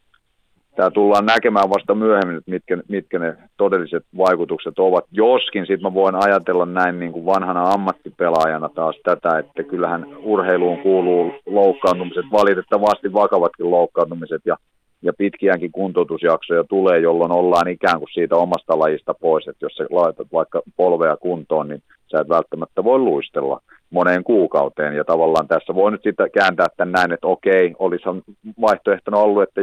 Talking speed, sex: 150 wpm, male